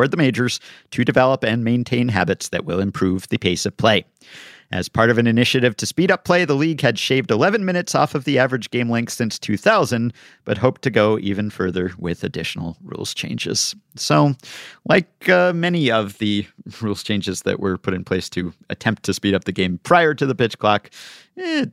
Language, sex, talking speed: English, male, 200 wpm